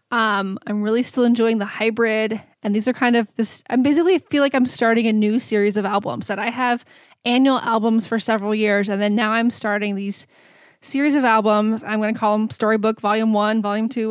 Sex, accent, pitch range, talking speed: female, American, 210-245 Hz, 215 wpm